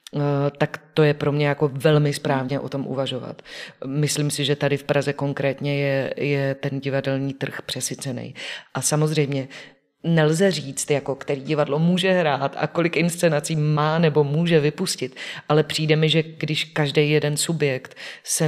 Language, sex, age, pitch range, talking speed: Czech, female, 30-49, 140-155 Hz, 160 wpm